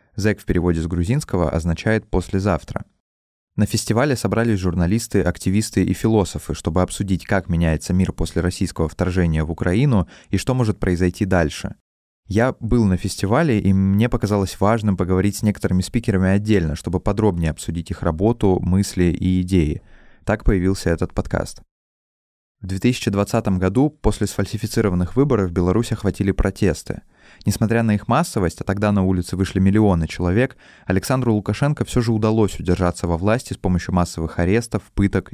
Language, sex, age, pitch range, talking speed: Russian, male, 20-39, 90-110 Hz, 150 wpm